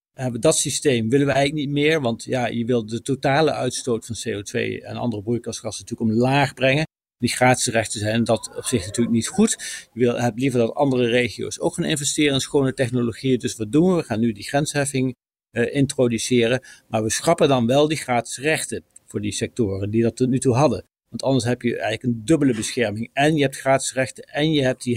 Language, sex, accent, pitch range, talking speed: Dutch, male, Dutch, 120-145 Hz, 220 wpm